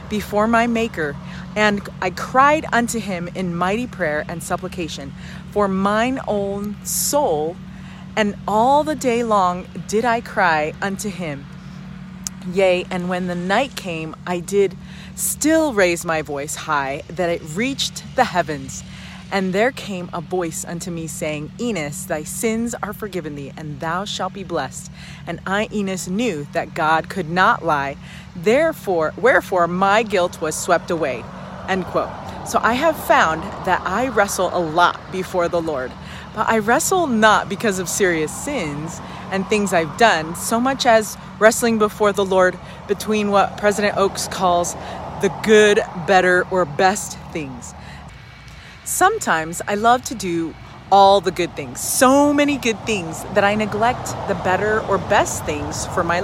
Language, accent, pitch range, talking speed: English, American, 170-215 Hz, 155 wpm